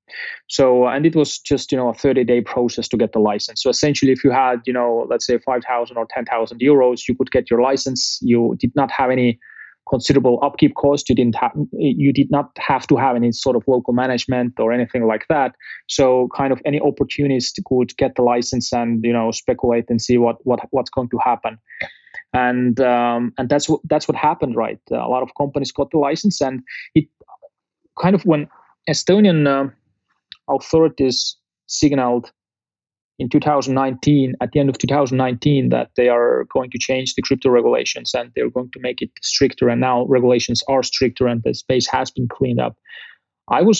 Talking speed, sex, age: 200 wpm, male, 20-39